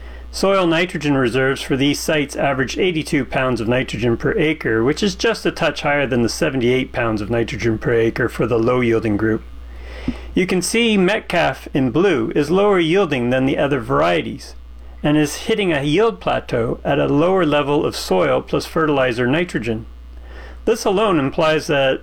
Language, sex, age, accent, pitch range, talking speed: English, male, 40-59, American, 110-165 Hz, 175 wpm